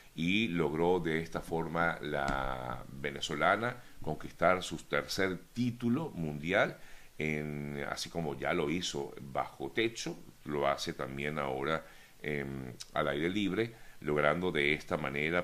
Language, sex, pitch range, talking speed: Spanish, male, 75-90 Hz, 125 wpm